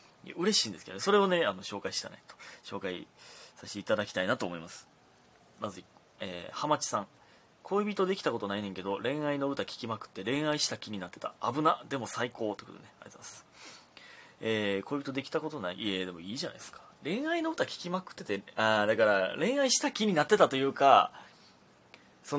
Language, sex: Japanese, male